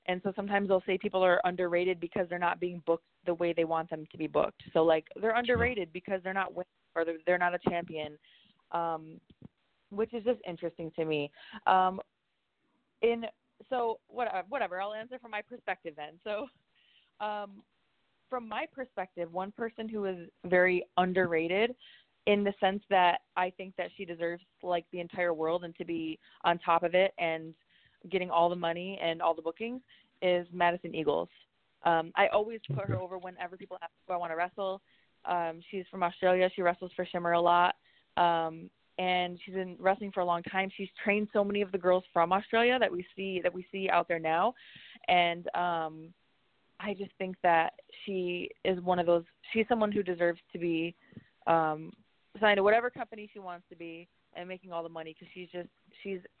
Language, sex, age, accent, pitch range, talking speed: English, female, 20-39, American, 170-200 Hz, 195 wpm